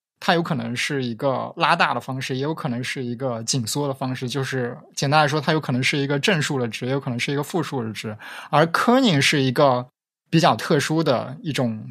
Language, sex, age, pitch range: Chinese, male, 20-39, 125-160 Hz